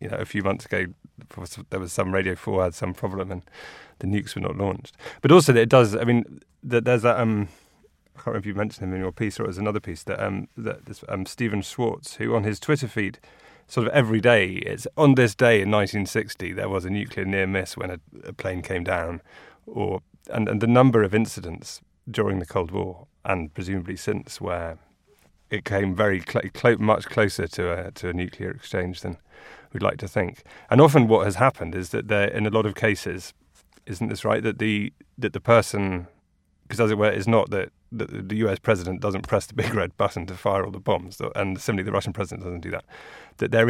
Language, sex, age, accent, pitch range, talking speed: English, male, 30-49, British, 95-110 Hz, 225 wpm